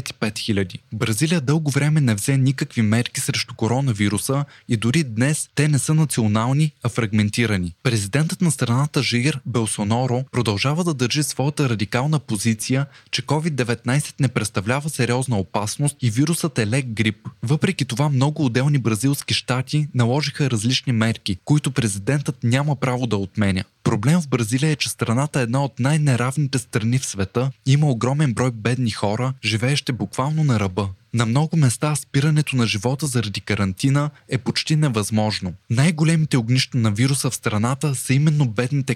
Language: Bulgarian